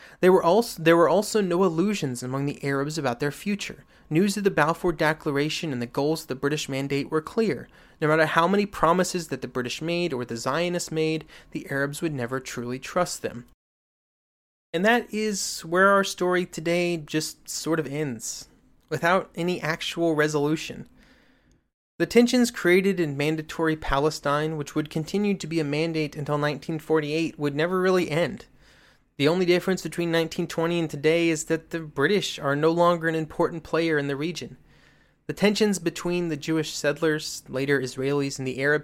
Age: 30-49